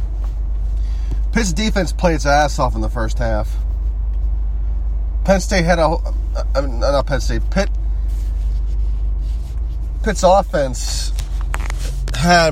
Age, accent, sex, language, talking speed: 30-49, American, male, English, 110 wpm